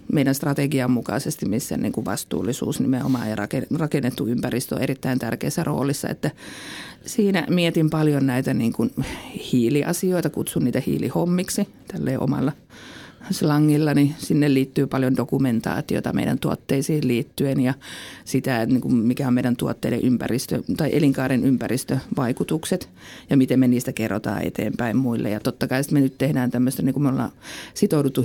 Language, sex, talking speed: Finnish, female, 140 wpm